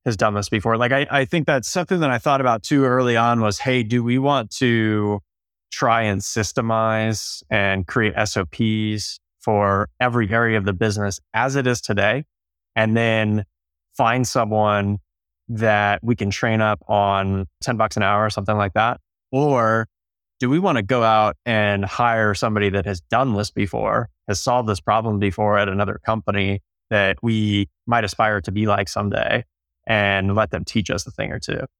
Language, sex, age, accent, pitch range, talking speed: English, male, 20-39, American, 100-115 Hz, 185 wpm